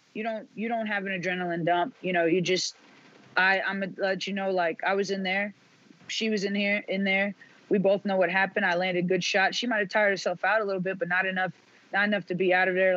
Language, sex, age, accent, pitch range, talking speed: English, female, 20-39, American, 175-200 Hz, 265 wpm